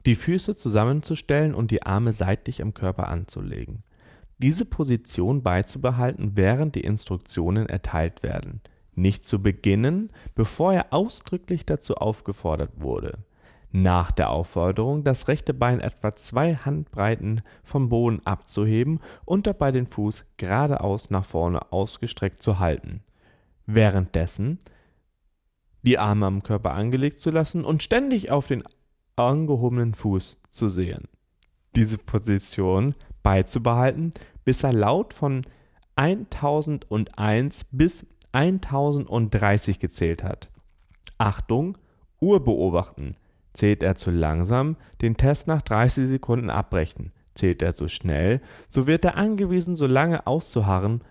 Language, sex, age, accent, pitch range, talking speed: German, male, 30-49, German, 95-140 Hz, 120 wpm